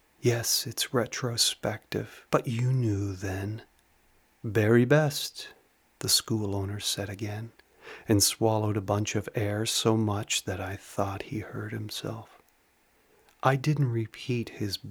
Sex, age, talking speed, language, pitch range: male, 40-59, 130 wpm, English, 105-125 Hz